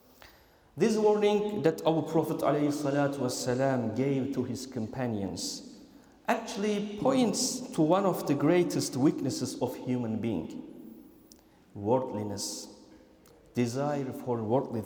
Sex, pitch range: male, 130-210 Hz